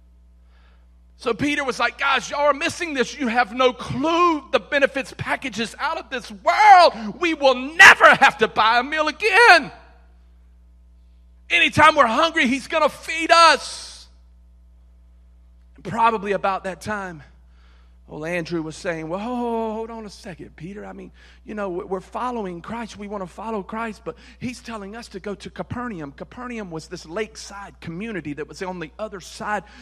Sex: male